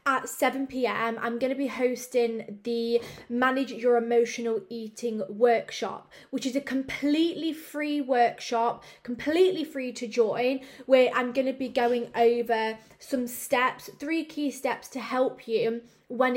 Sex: female